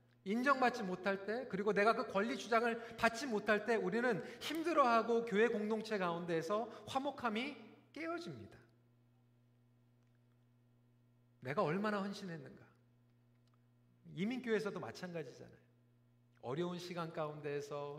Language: Korean